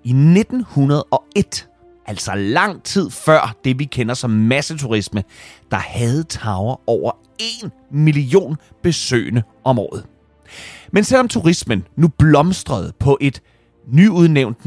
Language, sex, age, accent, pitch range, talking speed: Danish, male, 30-49, native, 105-150 Hz, 115 wpm